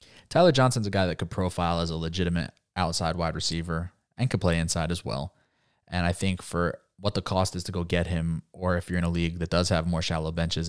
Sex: male